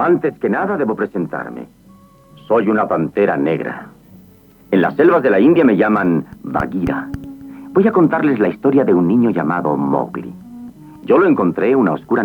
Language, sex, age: English, male, 50-69